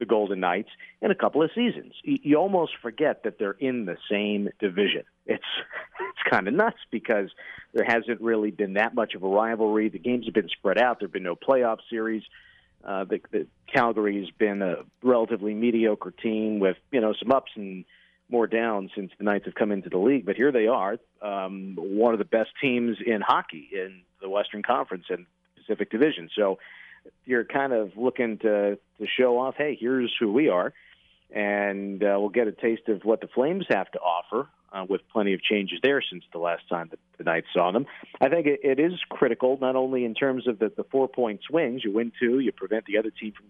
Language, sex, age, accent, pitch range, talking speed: English, male, 50-69, American, 105-130 Hz, 210 wpm